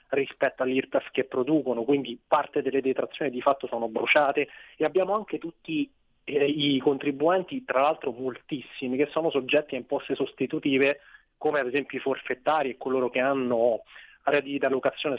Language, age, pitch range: Italian, 30-49, 130-150 Hz